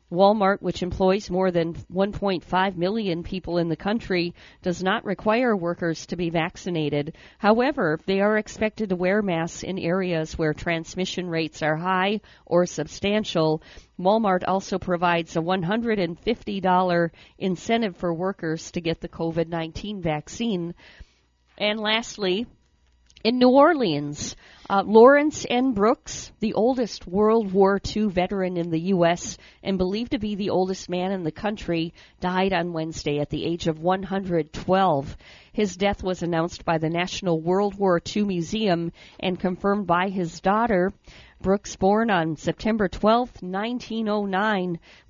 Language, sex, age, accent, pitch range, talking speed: English, female, 50-69, American, 170-205 Hz, 140 wpm